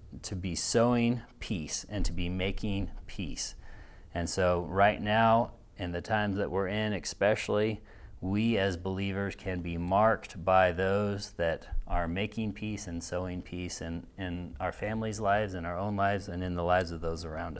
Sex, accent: male, American